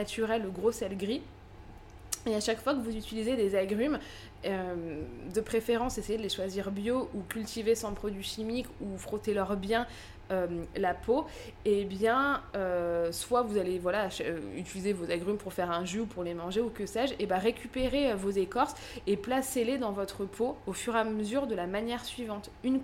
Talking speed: 200 wpm